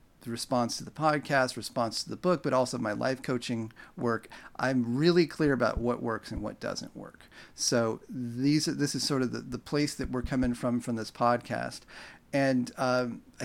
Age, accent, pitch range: 40-59, American, 120-145 Hz